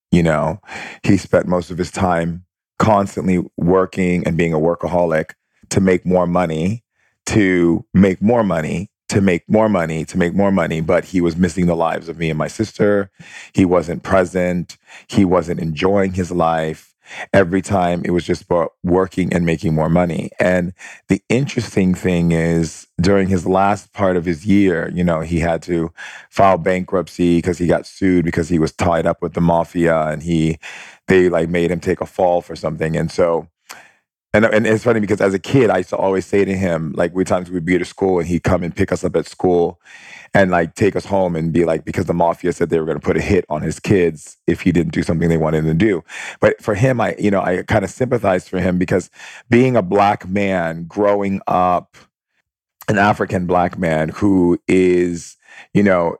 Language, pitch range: English, 85-95 Hz